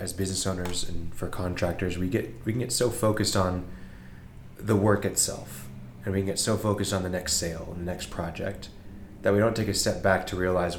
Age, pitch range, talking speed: 20-39, 85-100 Hz, 210 wpm